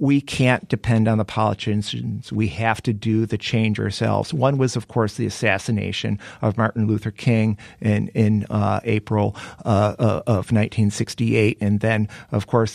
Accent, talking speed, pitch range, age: American, 160 wpm, 110-135 Hz, 50-69